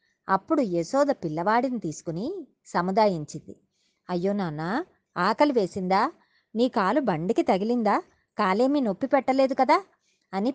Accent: native